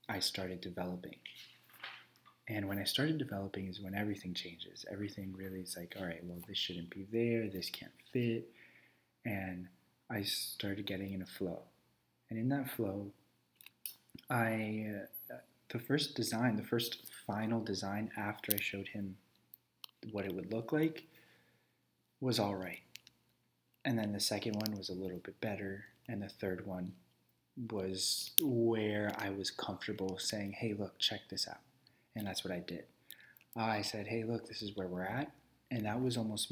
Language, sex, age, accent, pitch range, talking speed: English, male, 20-39, American, 95-115 Hz, 165 wpm